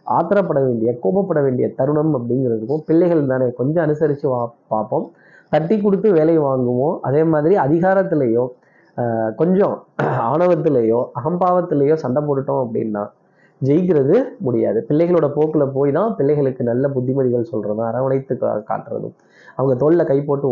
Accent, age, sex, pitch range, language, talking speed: native, 20-39, male, 125-165 Hz, Tamil, 125 wpm